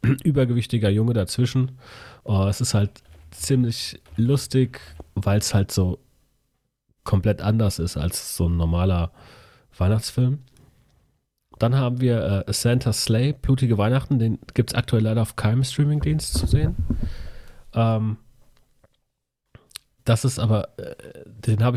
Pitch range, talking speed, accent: 105-130 Hz, 125 wpm, German